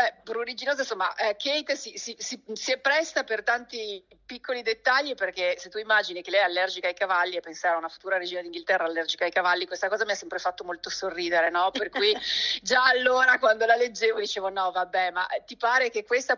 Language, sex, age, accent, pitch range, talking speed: Italian, female, 40-59, native, 180-235 Hz, 215 wpm